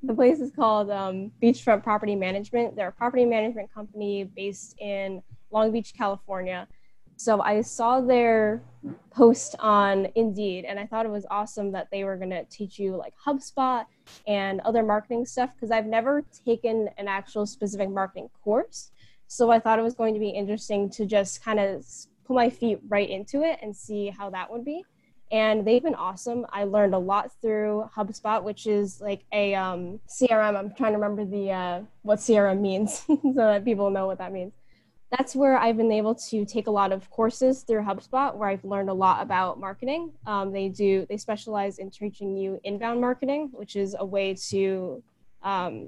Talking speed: 190 wpm